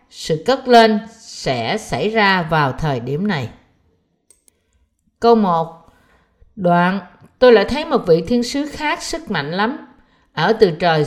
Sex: female